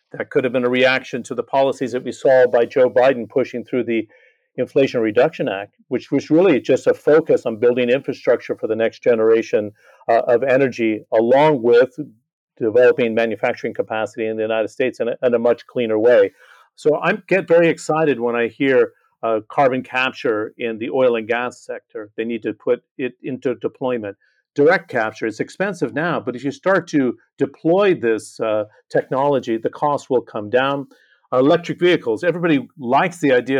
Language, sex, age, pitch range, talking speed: English, male, 50-69, 120-160 Hz, 180 wpm